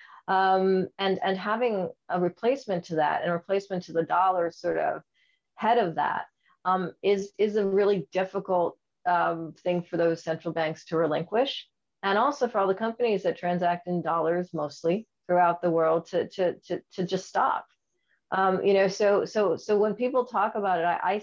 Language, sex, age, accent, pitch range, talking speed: English, female, 40-59, American, 170-200 Hz, 185 wpm